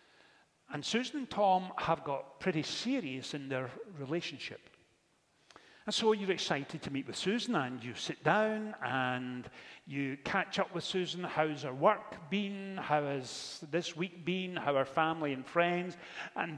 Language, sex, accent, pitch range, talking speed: English, male, British, 150-205 Hz, 160 wpm